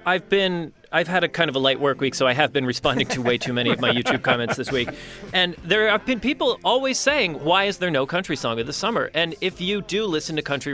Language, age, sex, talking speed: English, 30-49, male, 275 wpm